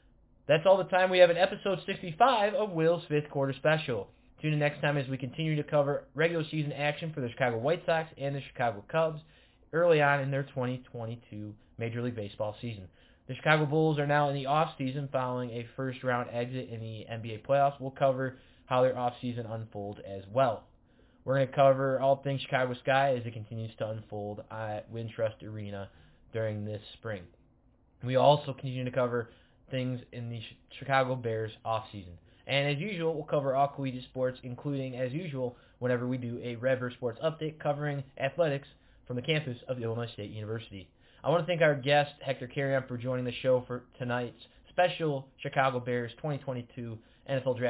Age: 20-39